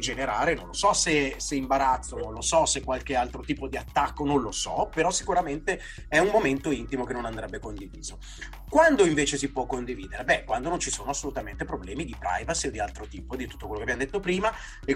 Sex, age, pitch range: male, 30-49, 125-155 Hz